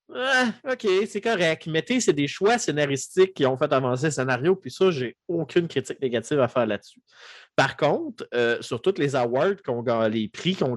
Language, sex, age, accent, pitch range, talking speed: French, male, 30-49, Canadian, 120-160 Hz, 195 wpm